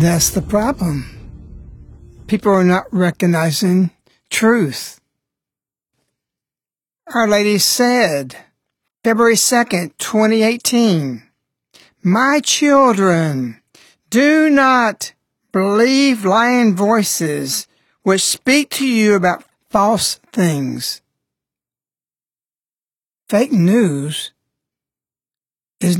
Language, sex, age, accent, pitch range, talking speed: English, male, 60-79, American, 155-225 Hz, 70 wpm